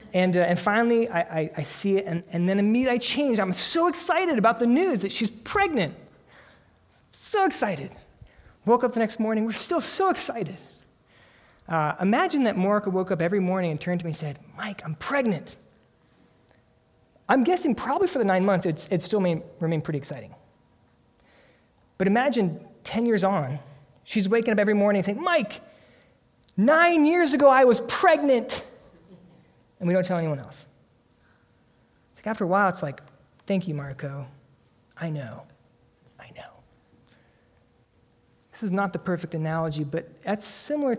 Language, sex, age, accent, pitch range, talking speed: English, male, 30-49, American, 165-220 Hz, 165 wpm